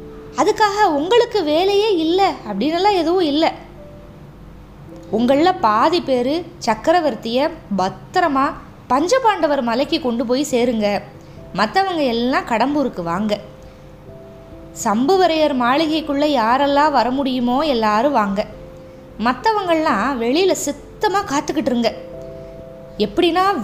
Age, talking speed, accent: 20-39, 85 wpm, native